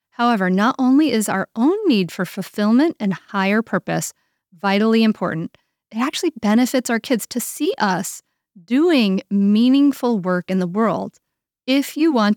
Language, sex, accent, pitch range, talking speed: English, female, American, 190-250 Hz, 150 wpm